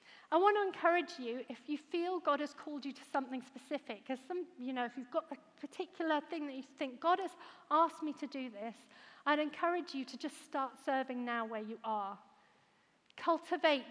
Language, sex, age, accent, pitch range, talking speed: English, female, 40-59, British, 260-320 Hz, 185 wpm